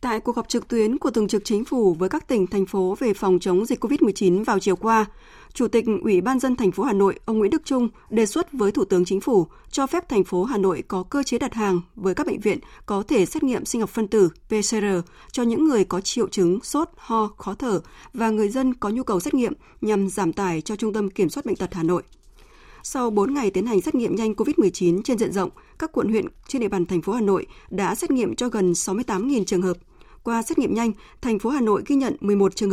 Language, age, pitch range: Vietnamese, 20-39, 190-240 Hz